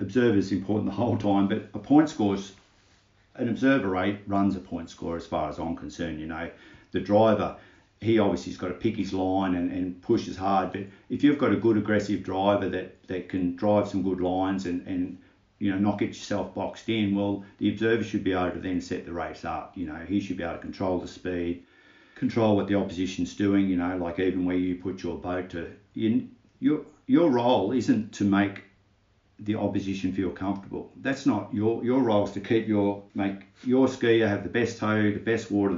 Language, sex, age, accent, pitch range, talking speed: English, male, 50-69, Australian, 95-105 Hz, 220 wpm